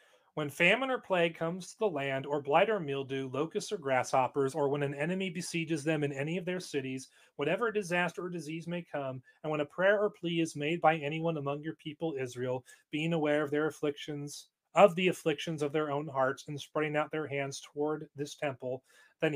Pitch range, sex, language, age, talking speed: 140-165 Hz, male, English, 30-49, 210 wpm